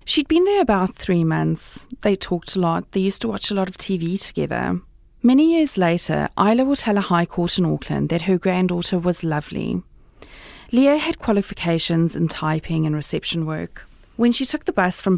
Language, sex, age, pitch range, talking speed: English, female, 40-59, 165-215 Hz, 195 wpm